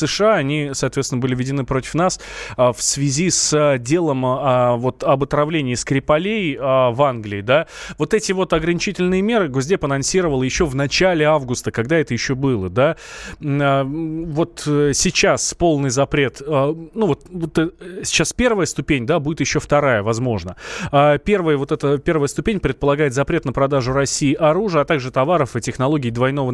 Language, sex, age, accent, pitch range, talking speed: Russian, male, 20-39, native, 130-165 Hz, 150 wpm